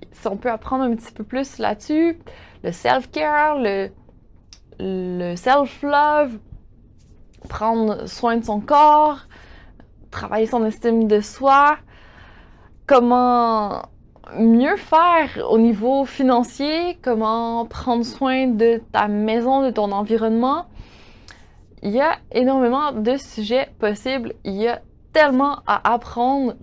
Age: 20-39